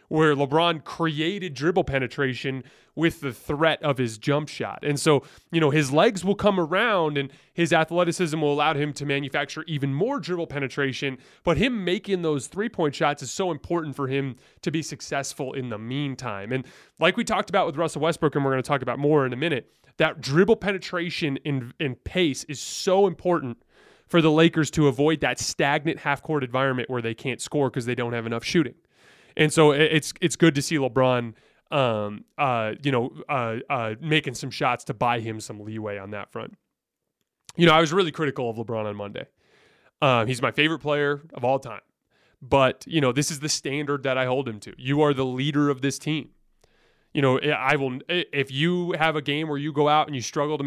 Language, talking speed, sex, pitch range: English, 205 wpm, male, 130-160 Hz